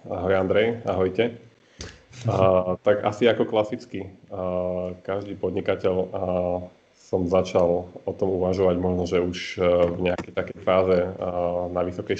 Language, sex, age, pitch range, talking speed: Slovak, male, 30-49, 90-95 Hz, 115 wpm